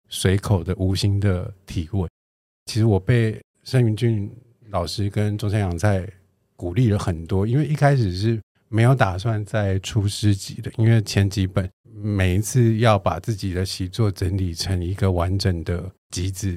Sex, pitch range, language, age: male, 95-110 Hz, Chinese, 50-69